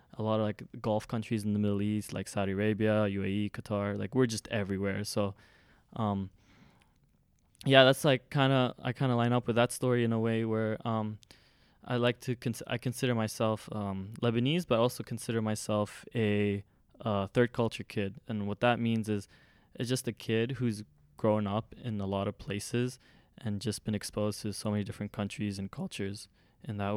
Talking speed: 185 wpm